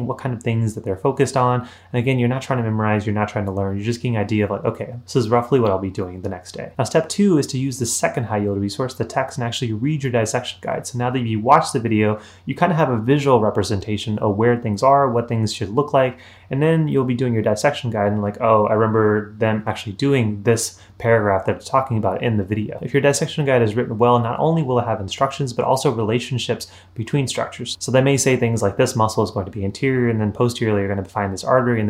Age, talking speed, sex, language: 30-49, 275 wpm, male, English